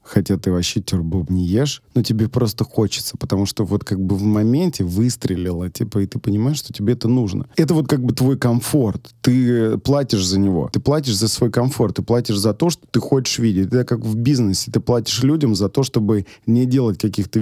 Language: Russian